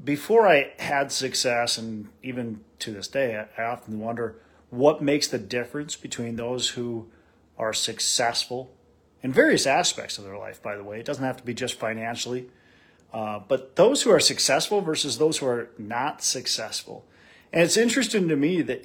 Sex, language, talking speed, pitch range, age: male, English, 175 wpm, 115-175 Hz, 40-59